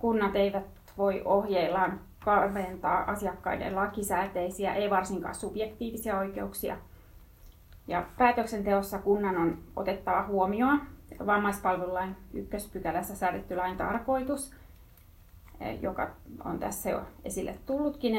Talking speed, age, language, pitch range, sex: 95 wpm, 30-49, Finnish, 175-205 Hz, female